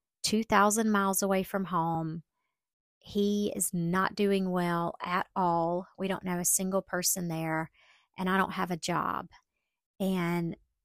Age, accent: 40-59, American